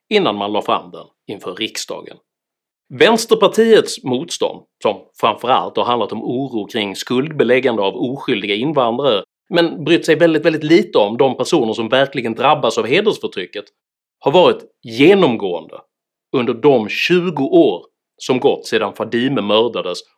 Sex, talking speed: male, 140 wpm